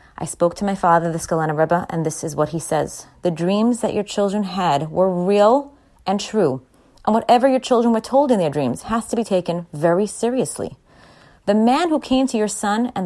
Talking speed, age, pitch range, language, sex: 215 wpm, 30-49, 165-215 Hz, English, female